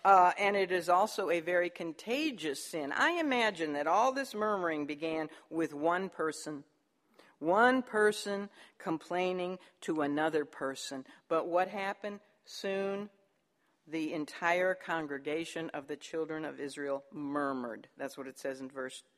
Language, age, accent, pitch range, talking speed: English, 50-69, American, 155-210 Hz, 140 wpm